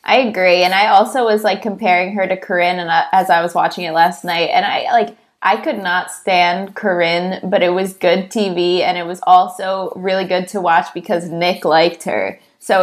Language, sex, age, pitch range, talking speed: English, female, 20-39, 180-220 Hz, 205 wpm